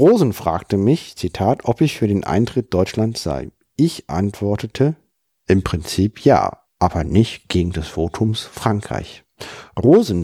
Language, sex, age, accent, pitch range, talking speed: German, male, 50-69, German, 95-125 Hz, 135 wpm